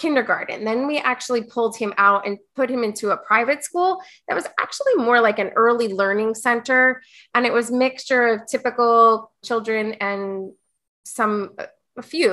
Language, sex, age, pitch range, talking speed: English, female, 20-39, 205-245 Hz, 165 wpm